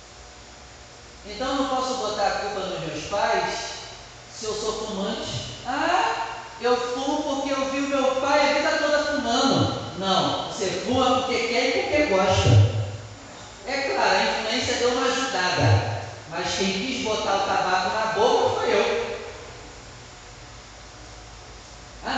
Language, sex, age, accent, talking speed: Portuguese, male, 40-59, Brazilian, 140 wpm